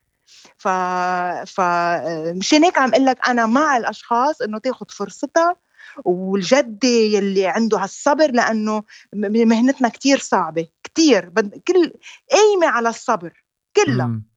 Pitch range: 220-295 Hz